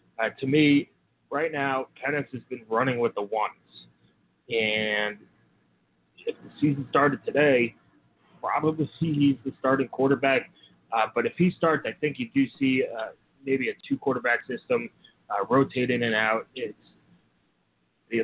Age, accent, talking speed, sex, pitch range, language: 30-49, American, 155 wpm, male, 115-140 Hz, English